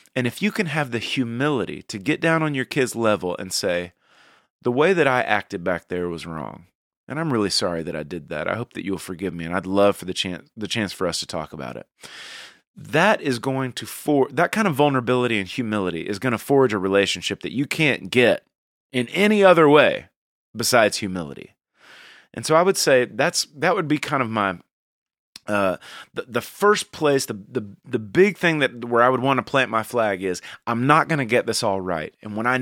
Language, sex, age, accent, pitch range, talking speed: English, male, 30-49, American, 95-140 Hz, 225 wpm